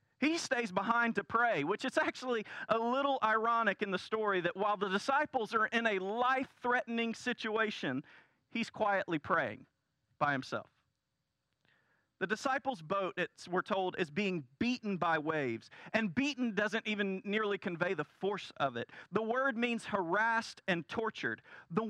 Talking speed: 150 wpm